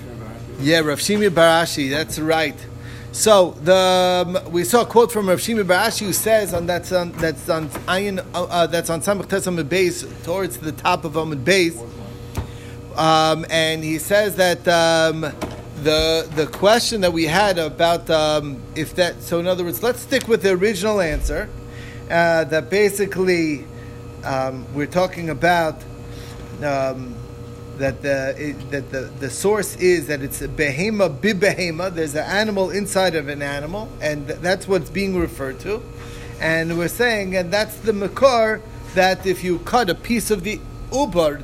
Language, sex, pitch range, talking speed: English, male, 140-190 Hz, 155 wpm